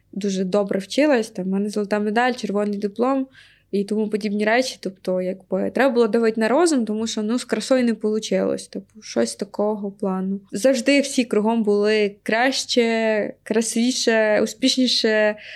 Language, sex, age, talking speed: Ukrainian, female, 20-39, 150 wpm